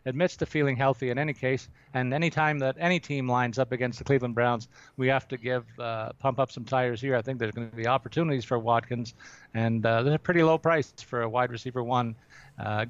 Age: 40-59